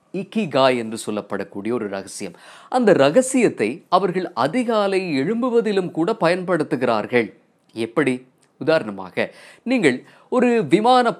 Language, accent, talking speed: Tamil, native, 90 wpm